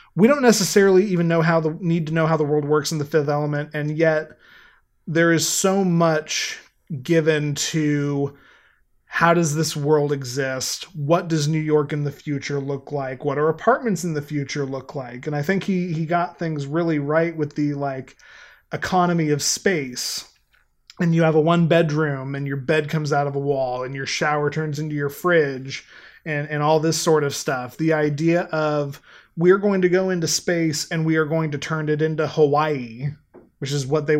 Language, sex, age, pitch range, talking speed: English, male, 30-49, 145-165 Hz, 200 wpm